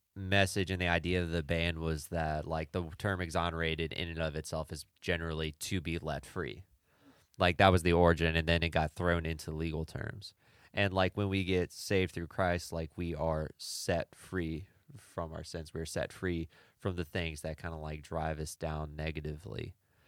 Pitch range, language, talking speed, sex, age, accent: 80-90 Hz, English, 195 wpm, male, 20-39, American